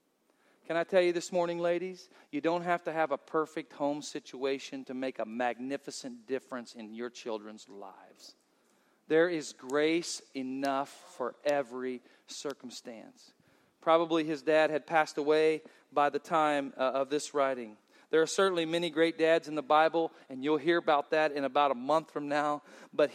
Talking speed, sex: 170 wpm, male